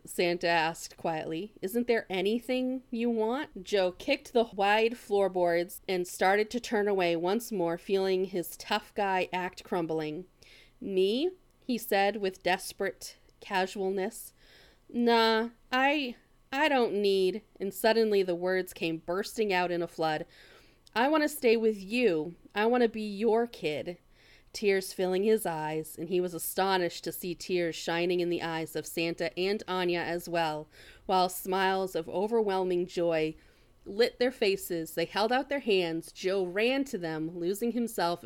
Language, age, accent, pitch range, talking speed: English, 30-49, American, 170-215 Hz, 155 wpm